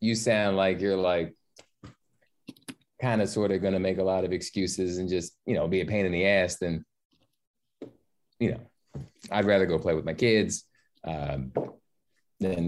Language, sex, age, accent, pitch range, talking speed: English, male, 20-39, American, 85-115 Hz, 180 wpm